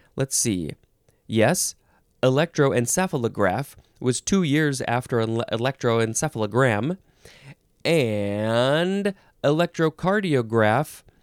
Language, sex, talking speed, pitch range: English, male, 60 wpm, 125-185 Hz